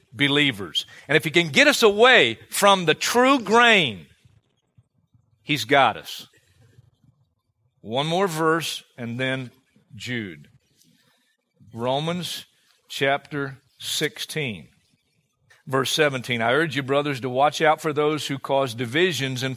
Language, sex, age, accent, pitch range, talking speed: English, male, 50-69, American, 125-165 Hz, 120 wpm